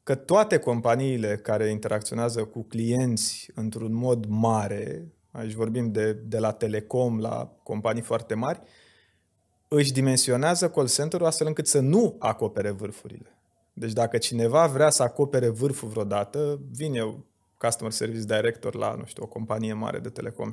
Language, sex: Romanian, male